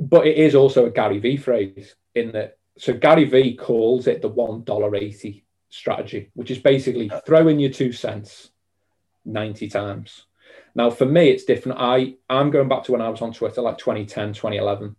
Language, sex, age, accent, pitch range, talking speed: English, male, 30-49, British, 105-135 Hz, 180 wpm